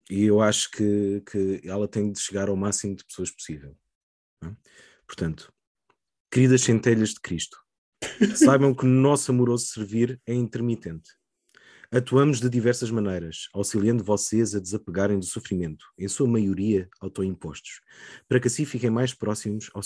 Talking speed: 150 wpm